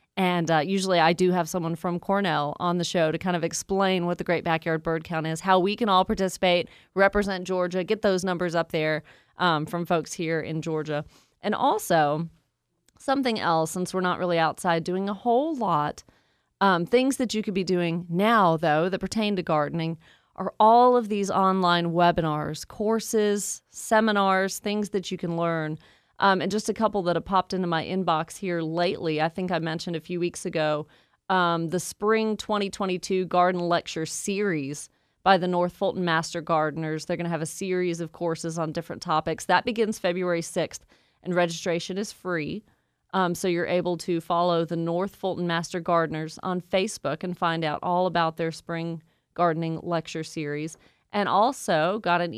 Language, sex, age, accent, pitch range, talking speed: English, female, 30-49, American, 165-195 Hz, 185 wpm